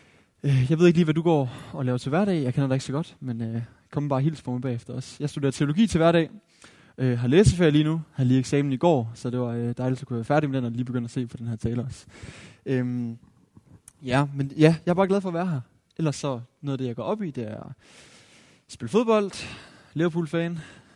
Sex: male